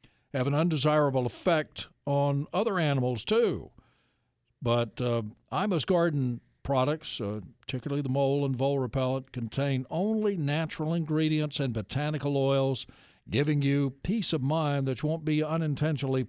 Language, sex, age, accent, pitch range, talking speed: English, male, 60-79, American, 125-160 Hz, 135 wpm